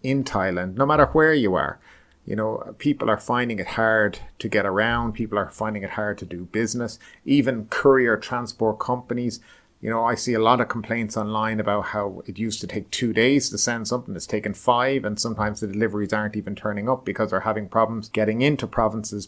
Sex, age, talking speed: male, 30-49, 210 wpm